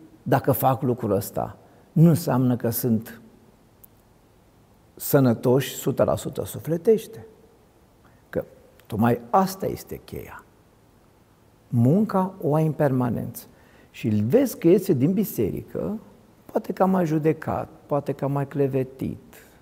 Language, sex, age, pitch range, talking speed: Romanian, male, 50-69, 110-160 Hz, 105 wpm